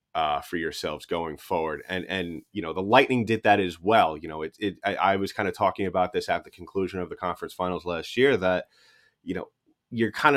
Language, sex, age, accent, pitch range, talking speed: English, male, 30-49, American, 90-105 Hz, 235 wpm